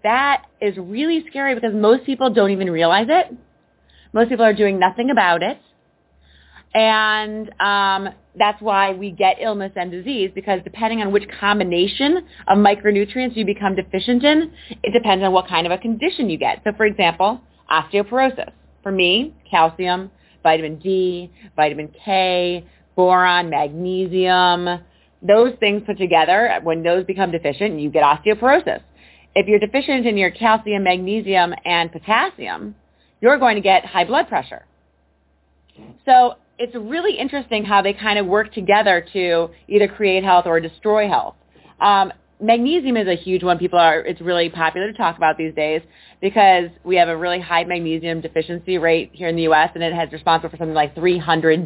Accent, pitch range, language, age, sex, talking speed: American, 165-215 Hz, English, 30-49, female, 165 wpm